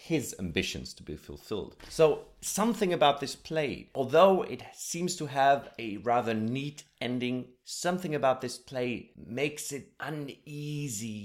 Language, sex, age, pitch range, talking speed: English, male, 30-49, 95-140 Hz, 140 wpm